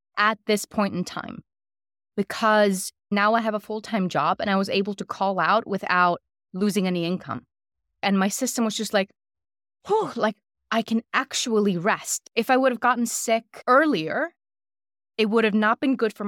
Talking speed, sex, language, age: 185 wpm, female, English, 20-39